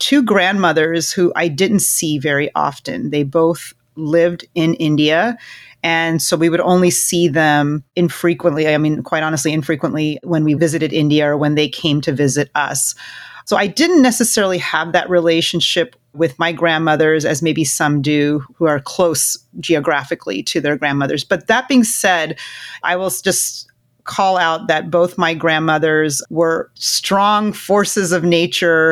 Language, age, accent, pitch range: English, 30-49, American, 155-175 Hz